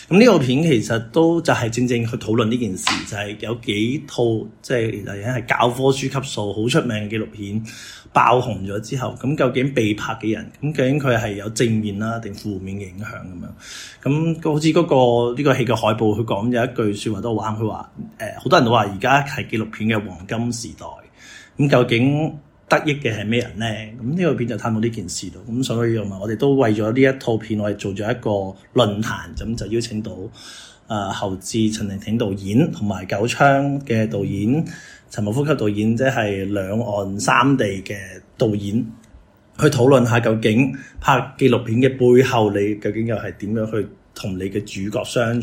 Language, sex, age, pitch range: Chinese, male, 30-49, 105-125 Hz